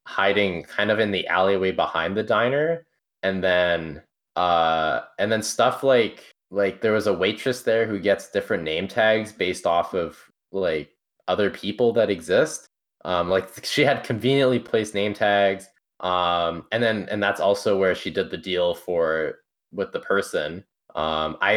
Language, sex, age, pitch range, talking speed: English, male, 20-39, 95-135 Hz, 165 wpm